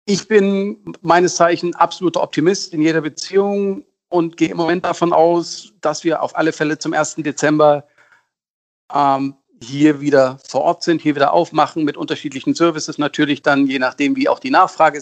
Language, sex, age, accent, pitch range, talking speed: German, male, 50-69, German, 140-170 Hz, 170 wpm